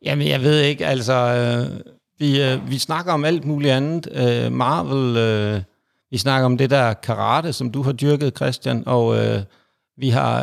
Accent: native